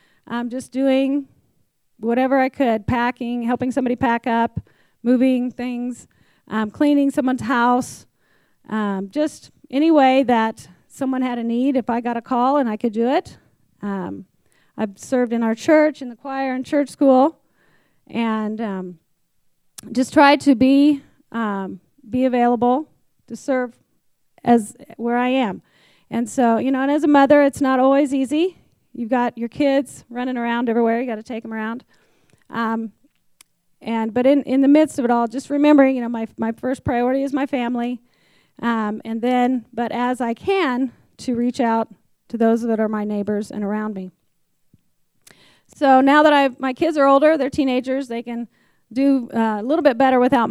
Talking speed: 175 wpm